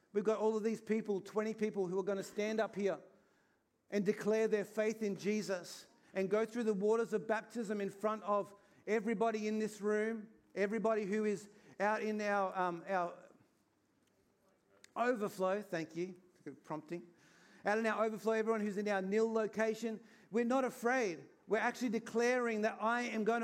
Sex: male